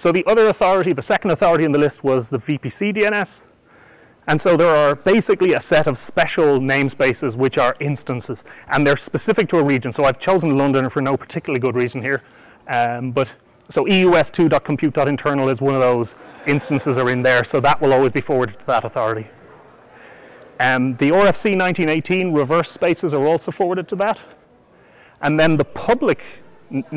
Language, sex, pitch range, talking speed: English, male, 135-170 Hz, 180 wpm